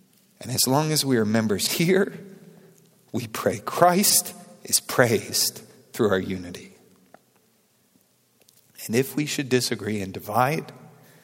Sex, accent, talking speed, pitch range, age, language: male, American, 125 wpm, 115-155 Hz, 50-69, English